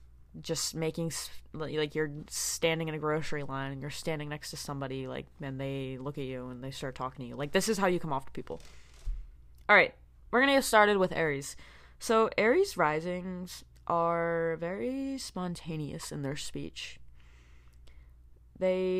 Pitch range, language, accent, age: 140-190 Hz, English, American, 20-39